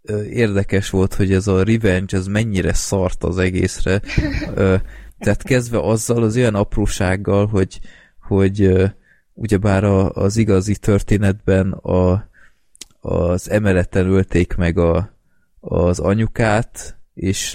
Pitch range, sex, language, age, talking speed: 90-105 Hz, male, Hungarian, 20-39, 110 wpm